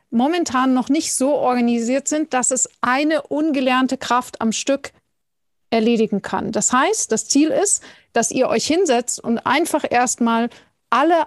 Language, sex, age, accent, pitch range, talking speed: German, female, 40-59, German, 230-275 Hz, 150 wpm